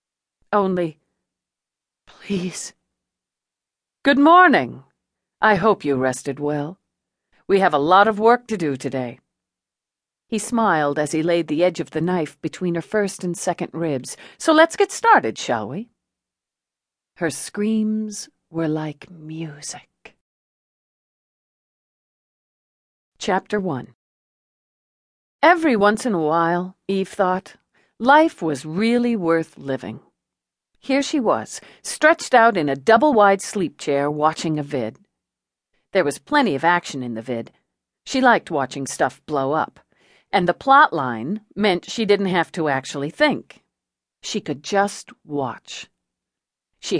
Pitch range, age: 155-220 Hz, 50-69